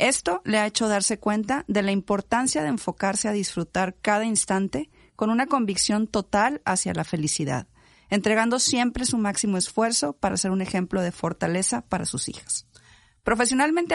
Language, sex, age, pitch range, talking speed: Spanish, female, 40-59, 180-230 Hz, 160 wpm